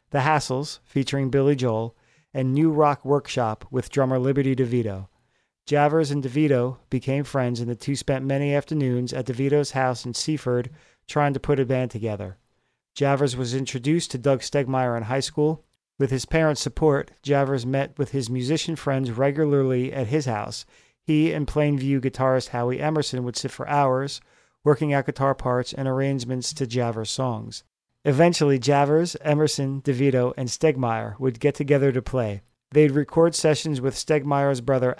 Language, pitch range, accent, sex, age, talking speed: English, 125-145 Hz, American, male, 40-59, 160 wpm